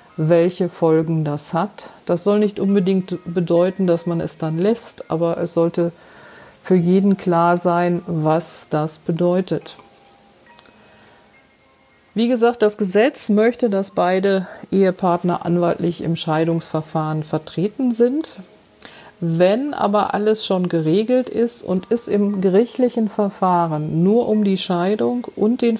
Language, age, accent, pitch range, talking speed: German, 50-69, German, 165-205 Hz, 125 wpm